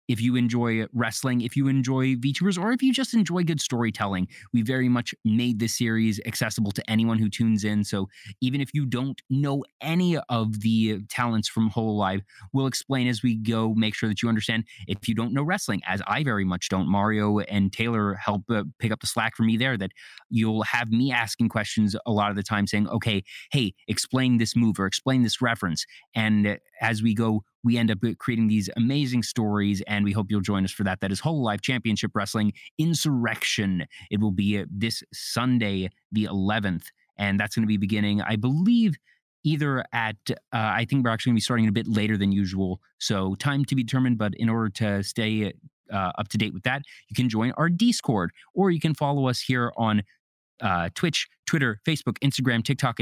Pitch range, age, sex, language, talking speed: 105-130 Hz, 20-39, male, English, 210 wpm